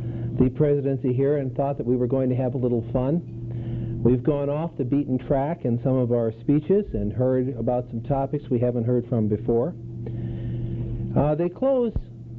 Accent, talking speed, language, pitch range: American, 185 wpm, English, 115-135 Hz